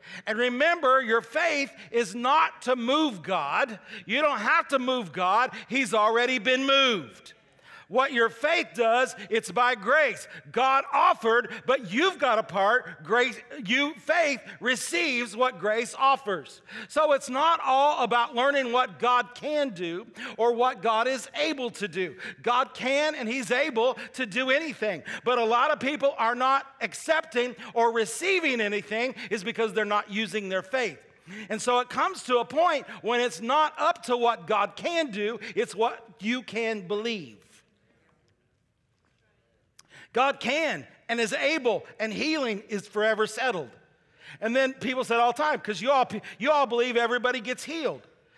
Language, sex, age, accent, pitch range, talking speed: English, male, 40-59, American, 220-270 Hz, 160 wpm